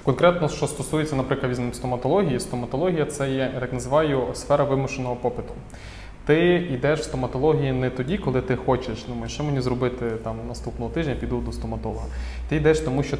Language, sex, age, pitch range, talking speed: Ukrainian, male, 20-39, 125-150 Hz, 175 wpm